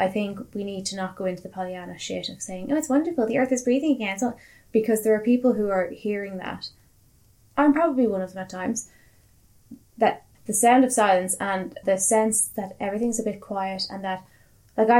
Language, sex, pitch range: English, female, 180-215 Hz